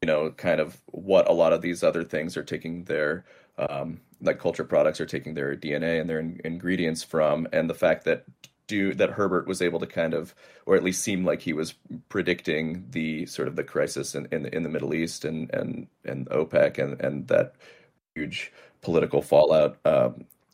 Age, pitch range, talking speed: 30-49, 90-125 Hz, 200 wpm